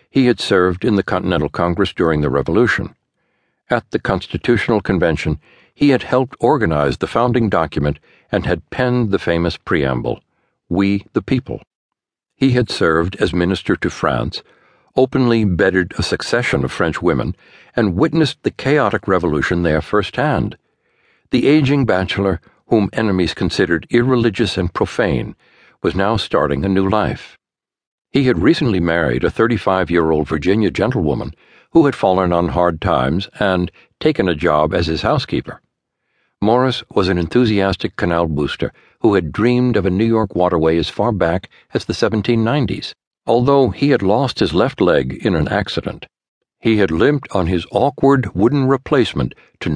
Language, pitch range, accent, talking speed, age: English, 85-125 Hz, American, 150 wpm, 60-79